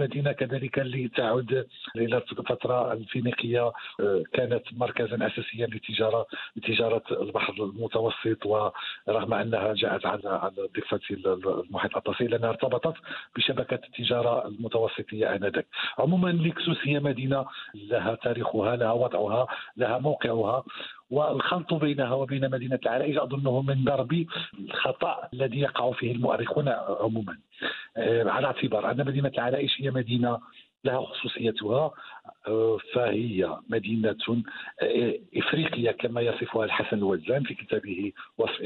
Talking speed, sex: 110 wpm, male